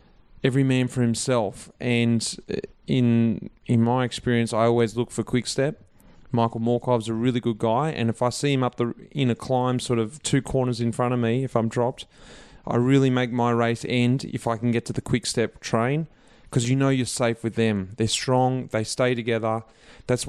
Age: 30-49